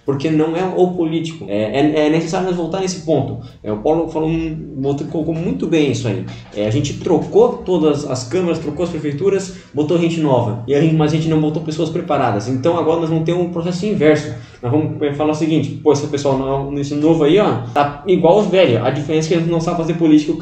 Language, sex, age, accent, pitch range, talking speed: Portuguese, male, 20-39, Brazilian, 135-170 Hz, 235 wpm